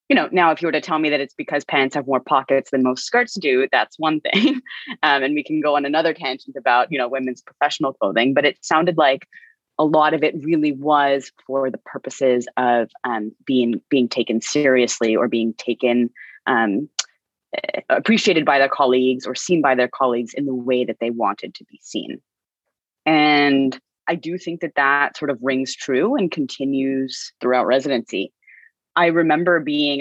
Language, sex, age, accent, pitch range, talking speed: English, female, 20-39, American, 125-150 Hz, 190 wpm